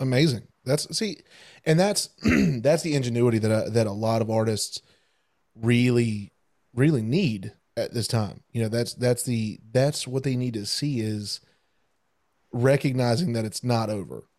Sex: male